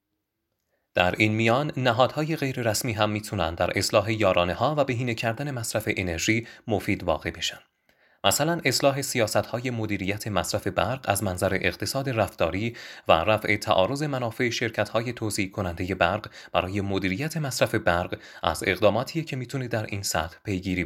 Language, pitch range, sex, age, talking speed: Persian, 95-125 Hz, male, 30-49, 140 wpm